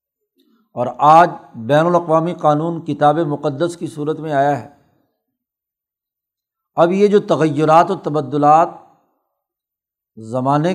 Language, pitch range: Urdu, 150-180 Hz